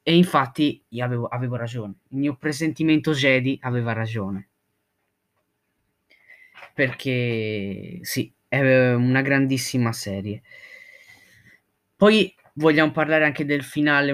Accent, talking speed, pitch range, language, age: native, 100 wpm, 125-160 Hz, Italian, 20-39